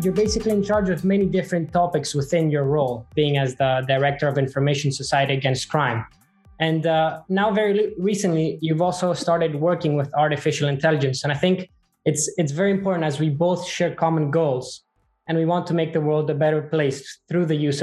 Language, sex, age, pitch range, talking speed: English, male, 20-39, 145-175 Hz, 195 wpm